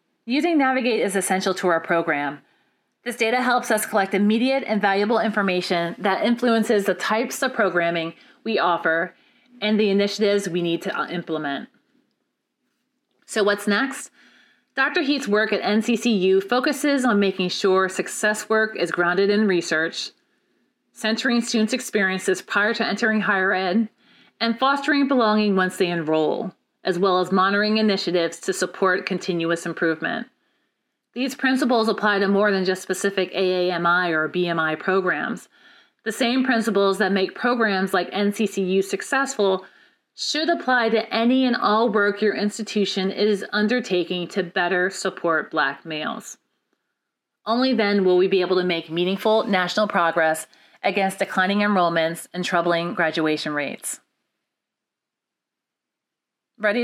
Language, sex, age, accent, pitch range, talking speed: English, female, 30-49, American, 180-230 Hz, 135 wpm